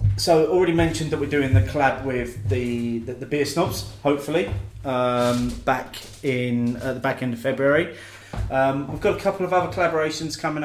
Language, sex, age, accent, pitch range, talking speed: English, male, 30-49, British, 115-140 Hz, 185 wpm